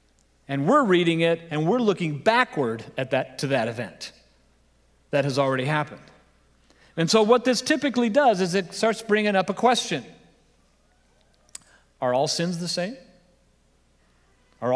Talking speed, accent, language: 145 wpm, American, English